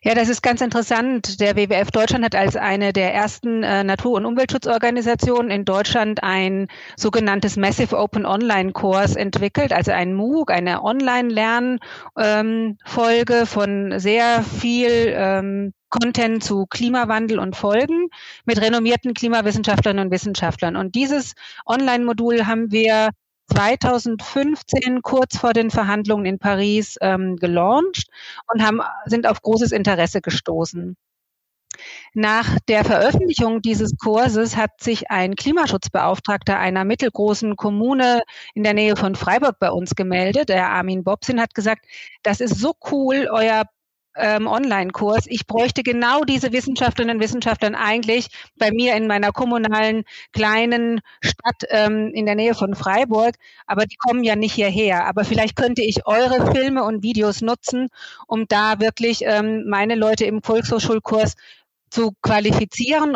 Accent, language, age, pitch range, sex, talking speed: German, German, 30-49, 205-235 Hz, female, 135 wpm